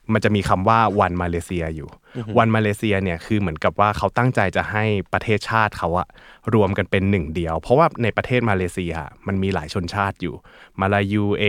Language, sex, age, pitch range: Thai, male, 20-39, 90-110 Hz